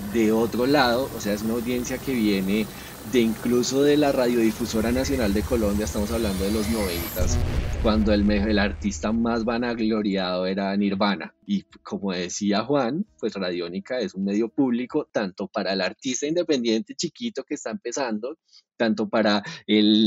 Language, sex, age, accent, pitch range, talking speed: Spanish, male, 20-39, Colombian, 110-140 Hz, 160 wpm